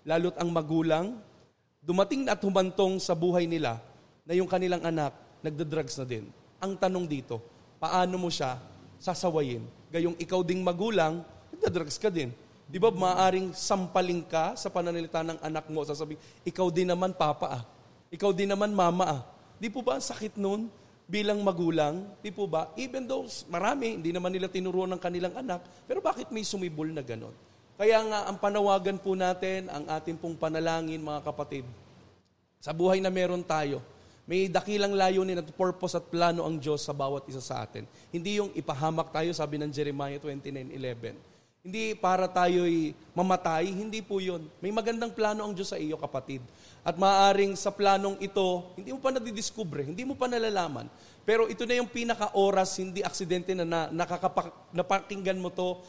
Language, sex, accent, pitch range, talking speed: Filipino, male, native, 160-195 Hz, 170 wpm